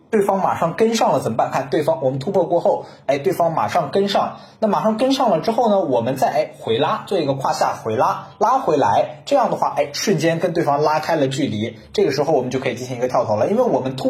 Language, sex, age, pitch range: Chinese, male, 20-39, 135-220 Hz